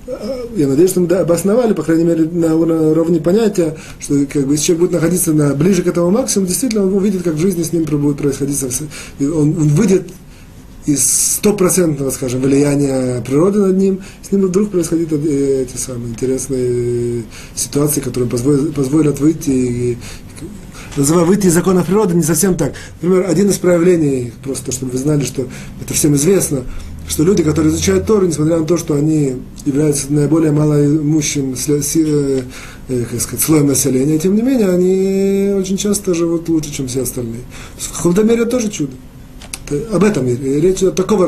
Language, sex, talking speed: Russian, male, 155 wpm